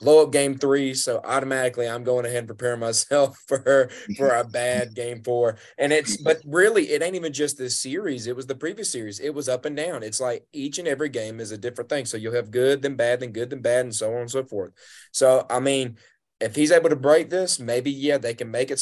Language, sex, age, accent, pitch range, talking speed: English, male, 20-39, American, 110-130 Hz, 250 wpm